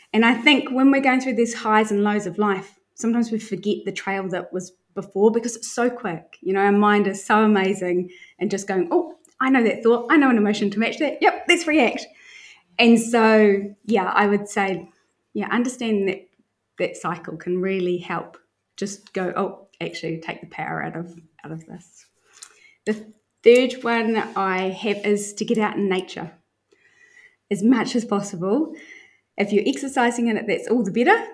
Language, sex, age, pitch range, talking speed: English, female, 20-39, 195-235 Hz, 195 wpm